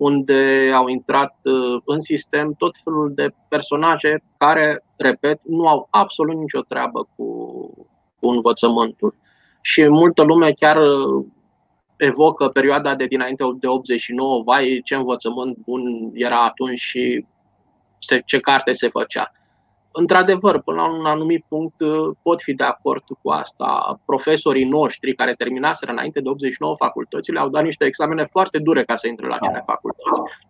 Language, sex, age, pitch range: Romanian, male, 20-39, 130-170 Hz